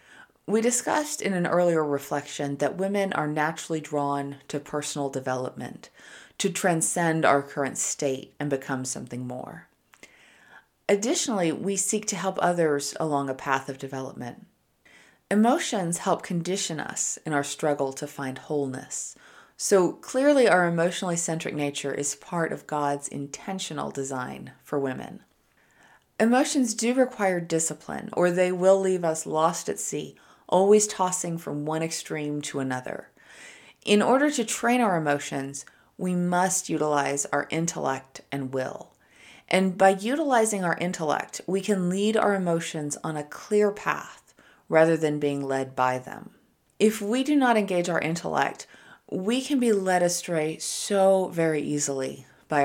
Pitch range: 145-195 Hz